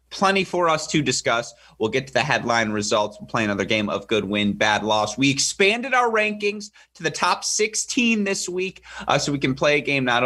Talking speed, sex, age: 220 wpm, male, 30-49